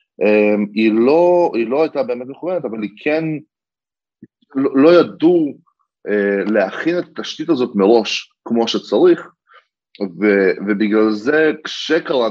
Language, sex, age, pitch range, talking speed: Hebrew, male, 20-39, 100-130 Hz, 125 wpm